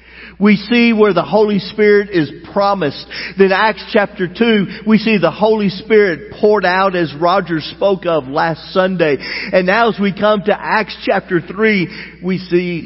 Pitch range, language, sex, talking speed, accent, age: 160-220 Hz, English, male, 170 wpm, American, 50-69